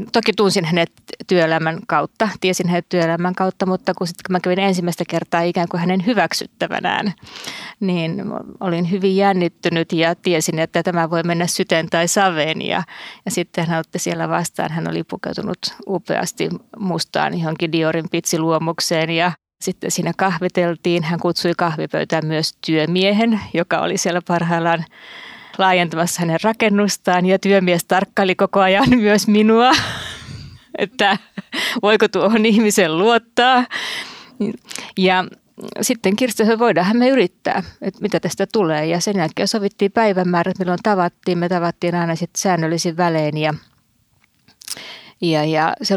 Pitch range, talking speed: 170-200 Hz, 135 wpm